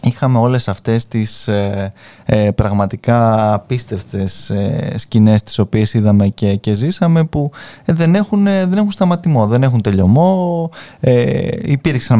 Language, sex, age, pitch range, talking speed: Greek, male, 20-39, 105-145 Hz, 110 wpm